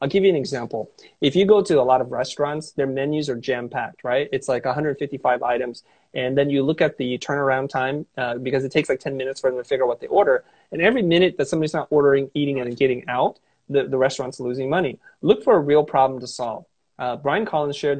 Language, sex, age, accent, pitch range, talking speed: English, male, 30-49, American, 125-150 Hz, 245 wpm